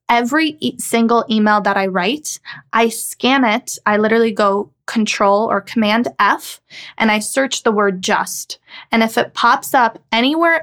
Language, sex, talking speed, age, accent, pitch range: English, female, 160 wpm, 20-39, American, 210-255 Hz